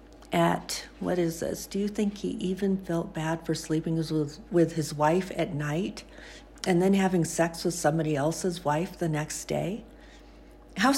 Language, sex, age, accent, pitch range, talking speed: English, female, 50-69, American, 155-185 Hz, 170 wpm